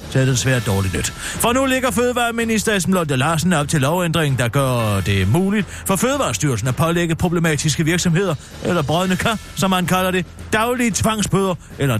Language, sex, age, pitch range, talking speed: Danish, male, 40-59, 135-215 Hz, 165 wpm